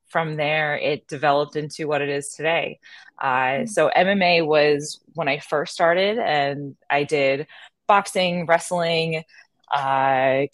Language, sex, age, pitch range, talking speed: English, female, 20-39, 145-180 Hz, 130 wpm